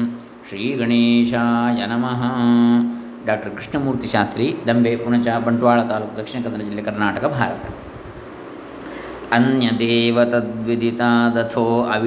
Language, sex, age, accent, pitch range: Kannada, male, 20-39, native, 115-125 Hz